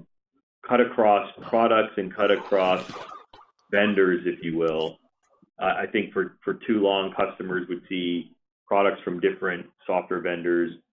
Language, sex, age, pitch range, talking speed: English, male, 40-59, 85-95 Hz, 135 wpm